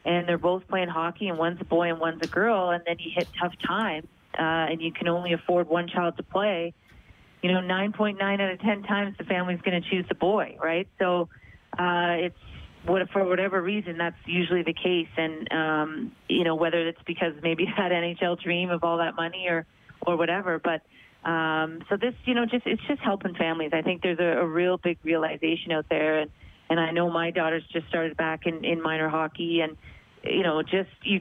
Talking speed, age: 220 wpm, 30-49